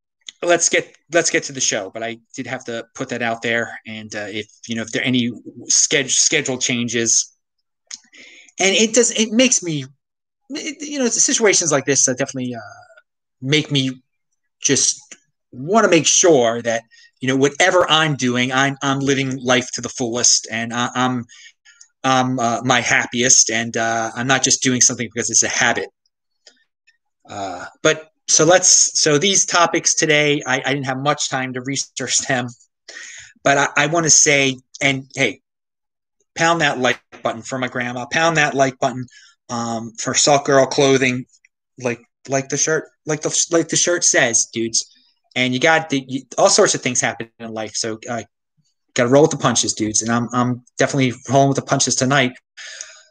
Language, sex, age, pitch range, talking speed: English, male, 30-49, 120-160 Hz, 185 wpm